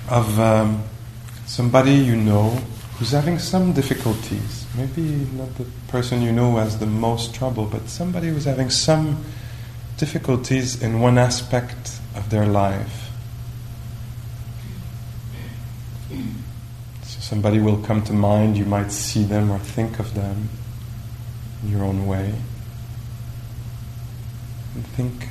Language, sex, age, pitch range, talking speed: English, male, 30-49, 110-120 Hz, 120 wpm